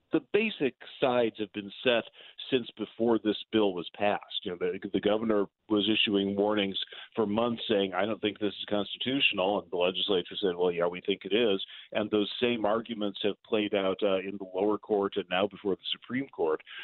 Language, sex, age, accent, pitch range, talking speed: English, male, 50-69, American, 100-120 Hz, 205 wpm